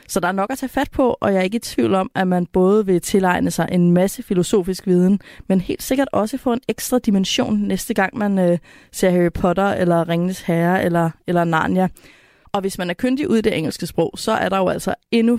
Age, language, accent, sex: 30-49, Danish, native, female